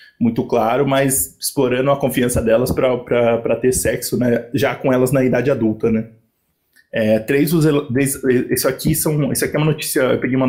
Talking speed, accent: 170 wpm, Brazilian